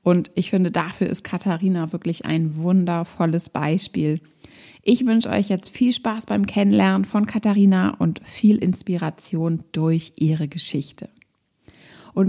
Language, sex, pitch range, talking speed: German, female, 170-210 Hz, 130 wpm